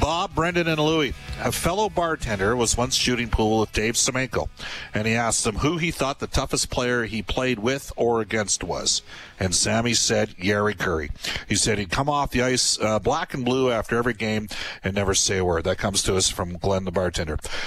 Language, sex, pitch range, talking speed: English, male, 100-140 Hz, 210 wpm